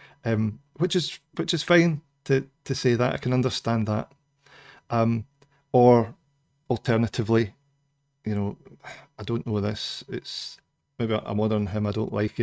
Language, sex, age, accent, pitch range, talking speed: English, male, 40-59, British, 110-140 Hz, 150 wpm